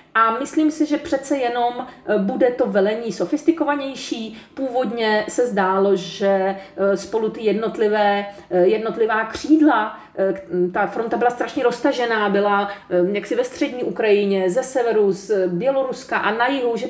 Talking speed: 130 wpm